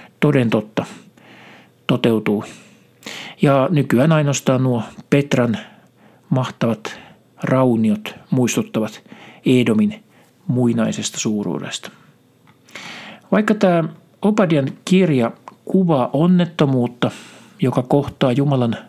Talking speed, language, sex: 70 wpm, Finnish, male